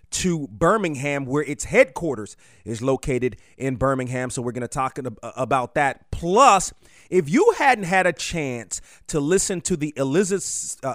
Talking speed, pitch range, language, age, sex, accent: 155 wpm, 130-160 Hz, English, 30-49, male, American